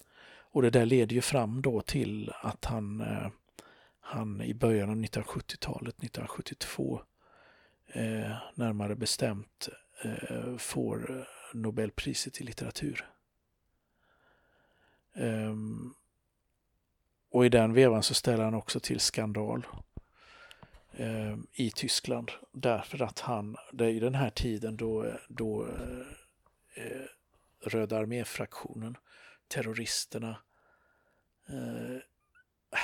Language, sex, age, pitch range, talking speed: Swedish, male, 50-69, 110-120 Hz, 85 wpm